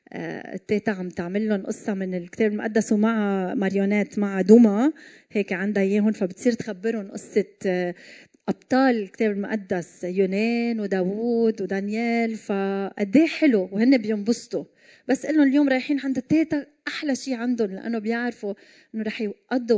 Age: 30-49